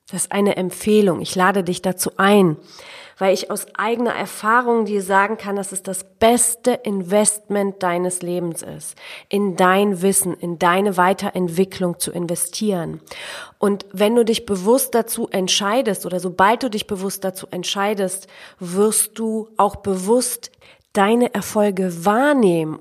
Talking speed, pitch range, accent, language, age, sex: 140 wpm, 185-230 Hz, German, German, 30-49, female